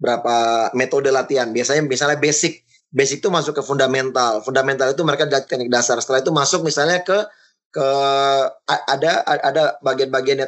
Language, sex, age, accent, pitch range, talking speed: Indonesian, male, 20-39, native, 135-180 Hz, 145 wpm